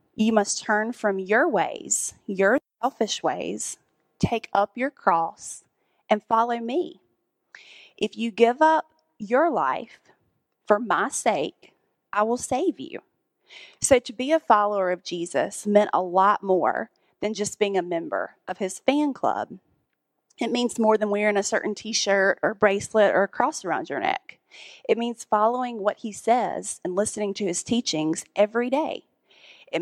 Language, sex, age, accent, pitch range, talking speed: English, female, 30-49, American, 200-240 Hz, 160 wpm